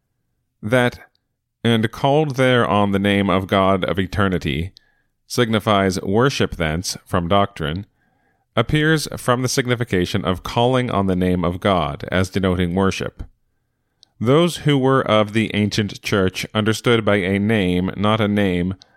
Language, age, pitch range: English, 30-49, 95-115 Hz